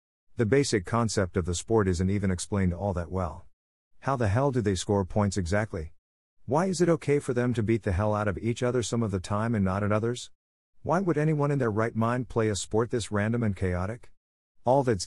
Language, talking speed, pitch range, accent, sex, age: English, 230 wpm, 90-115 Hz, American, male, 50-69